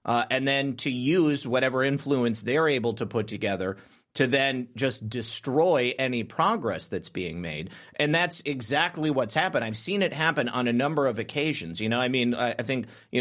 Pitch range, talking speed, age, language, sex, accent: 125-165 Hz, 215 wpm, 30-49, English, male, American